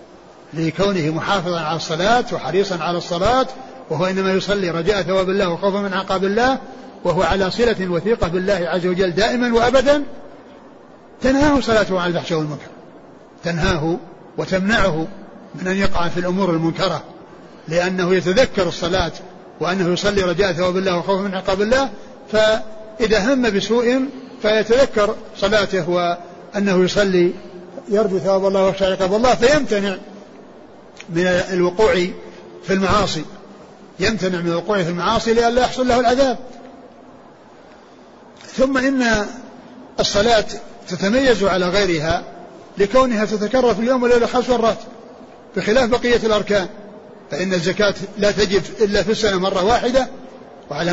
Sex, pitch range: male, 185-230 Hz